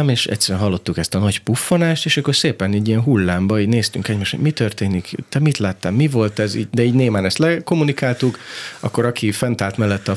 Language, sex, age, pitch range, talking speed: Hungarian, male, 30-49, 95-135 Hz, 210 wpm